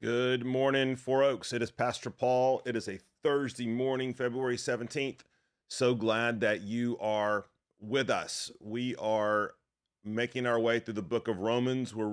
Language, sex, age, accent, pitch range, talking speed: English, male, 40-59, American, 110-125 Hz, 165 wpm